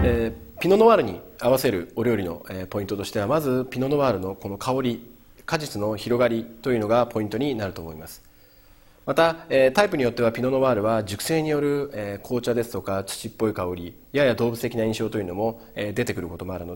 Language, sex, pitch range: Japanese, male, 100-135 Hz